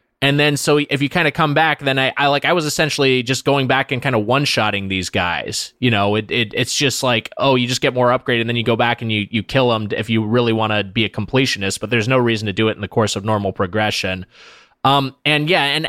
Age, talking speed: 20-39, 275 wpm